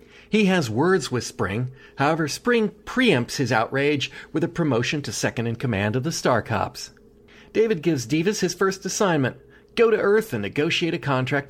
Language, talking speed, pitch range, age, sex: English, 165 wpm, 115-165 Hz, 40-59, male